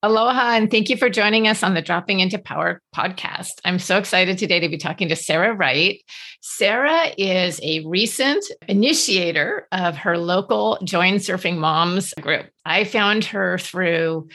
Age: 40-59